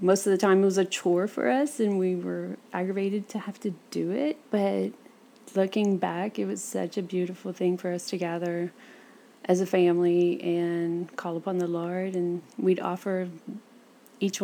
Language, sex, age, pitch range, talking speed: English, female, 30-49, 185-215 Hz, 185 wpm